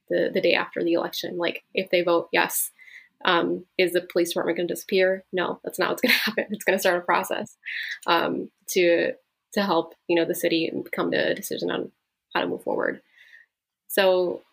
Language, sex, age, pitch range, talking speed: English, female, 20-39, 170-190 Hz, 205 wpm